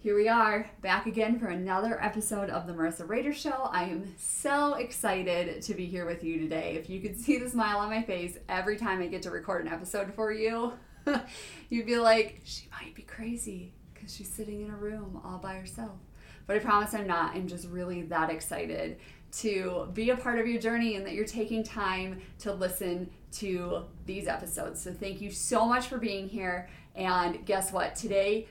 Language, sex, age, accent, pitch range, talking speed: English, female, 20-39, American, 180-220 Hz, 205 wpm